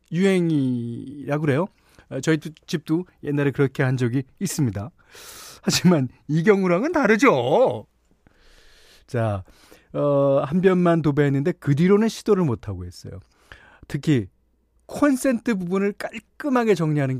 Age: 40-59